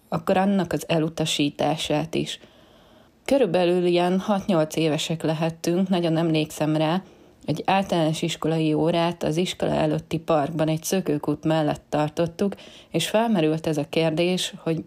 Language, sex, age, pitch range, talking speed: Hungarian, female, 30-49, 155-175 Hz, 125 wpm